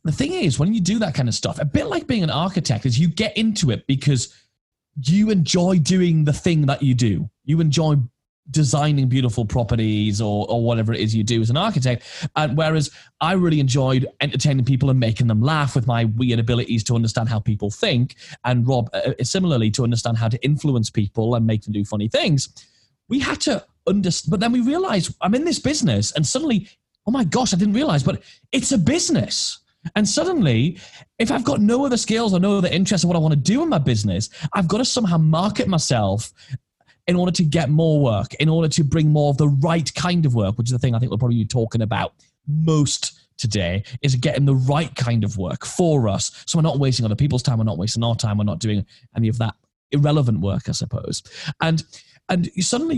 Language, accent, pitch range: English, British, 120-175 Hz